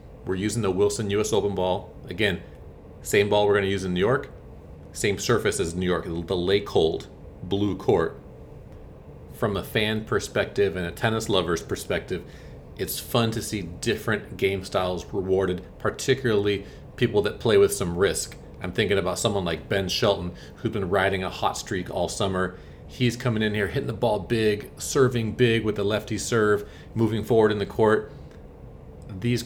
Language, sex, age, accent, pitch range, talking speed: English, male, 40-59, American, 95-110 Hz, 175 wpm